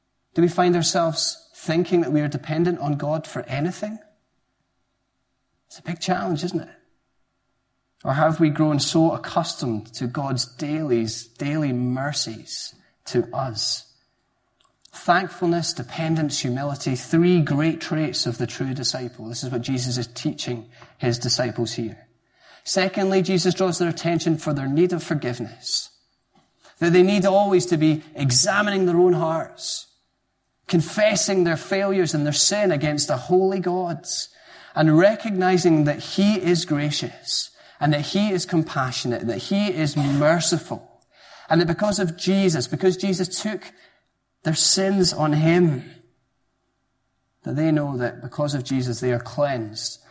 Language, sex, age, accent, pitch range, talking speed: English, male, 30-49, British, 125-175 Hz, 140 wpm